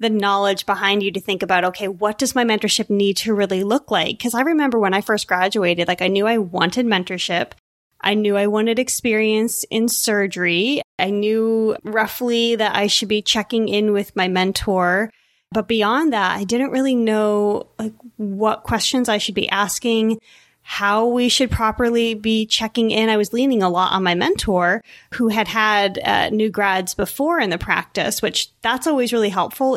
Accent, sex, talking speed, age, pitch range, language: American, female, 185 wpm, 20-39, 195-235 Hz, English